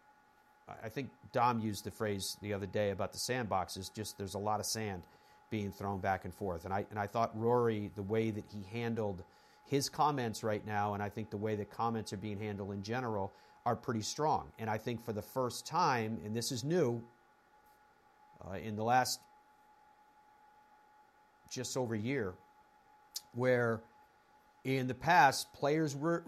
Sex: male